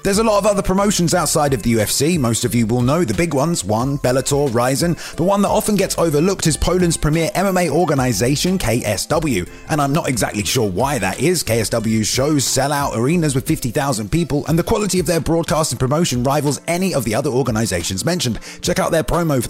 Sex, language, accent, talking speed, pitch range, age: male, English, British, 210 wpm, 125-175 Hz, 30-49